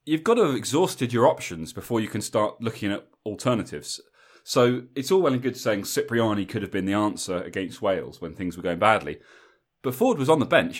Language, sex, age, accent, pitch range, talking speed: English, male, 30-49, British, 100-135 Hz, 220 wpm